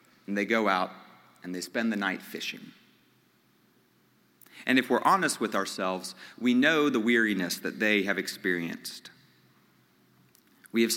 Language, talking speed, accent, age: English, 140 wpm, American, 40-59